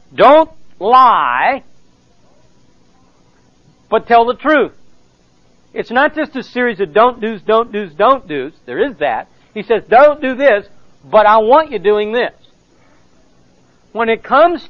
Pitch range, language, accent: 170-235 Hz, English, American